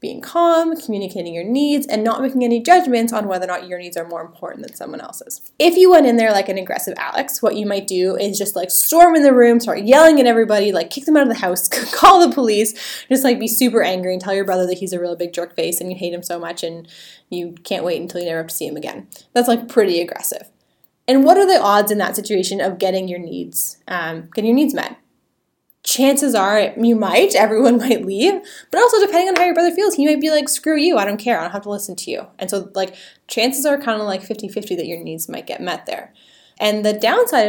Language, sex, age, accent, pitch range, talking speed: English, female, 10-29, American, 185-250 Hz, 255 wpm